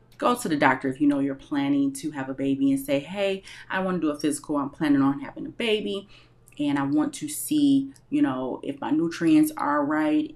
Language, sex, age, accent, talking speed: English, female, 30-49, American, 230 wpm